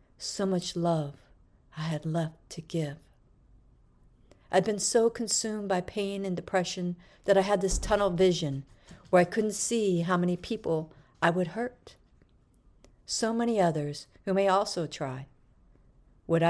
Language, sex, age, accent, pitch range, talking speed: English, female, 50-69, American, 145-190 Hz, 145 wpm